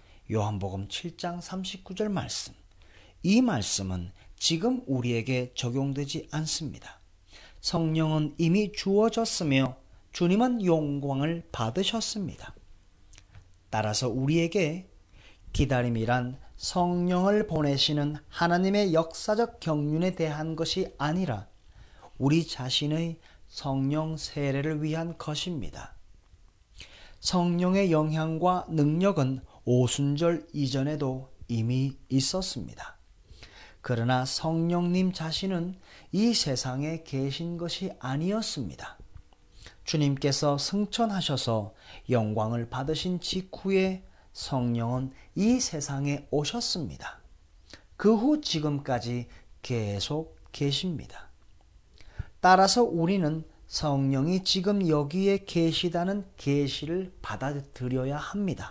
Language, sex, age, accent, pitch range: Korean, male, 40-59, native, 125-175 Hz